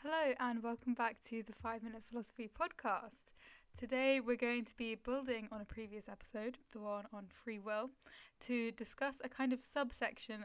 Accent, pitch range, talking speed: British, 215-245 Hz, 170 wpm